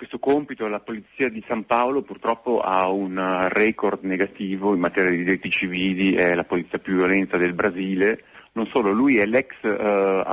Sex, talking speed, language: male, 175 wpm, Italian